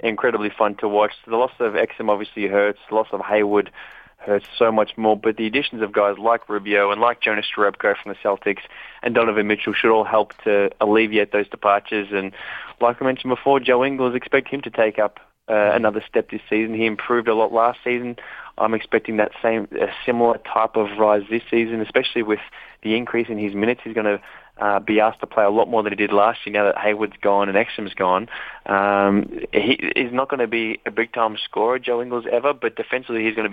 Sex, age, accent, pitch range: male, 20-39, Australian, 105-120 Hz